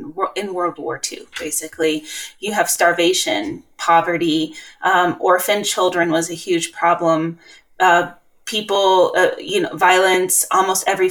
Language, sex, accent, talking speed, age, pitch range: English, female, American, 130 wpm, 20-39, 170-220 Hz